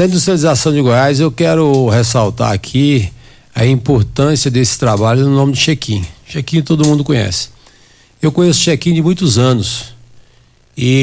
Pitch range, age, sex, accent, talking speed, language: 120-150 Hz, 60-79, male, Brazilian, 140 wpm, Portuguese